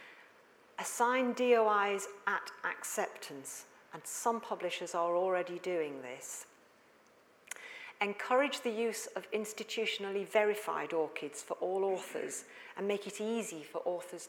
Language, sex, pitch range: English, female, 175-235 Hz